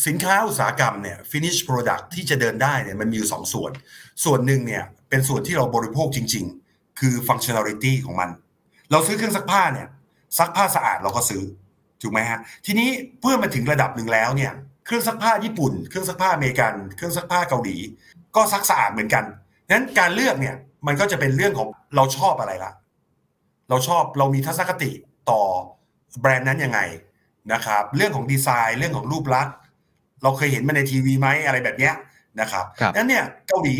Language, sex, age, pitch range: Thai, male, 60-79, 120-160 Hz